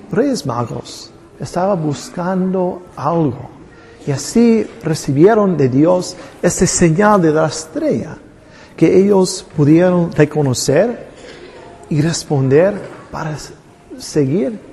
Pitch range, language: 135-175 Hz, English